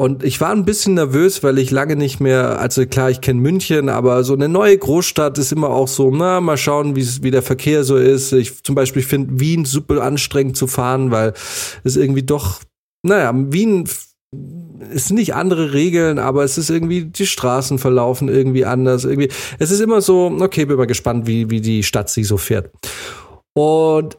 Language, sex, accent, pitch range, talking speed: German, male, German, 130-175 Hz, 195 wpm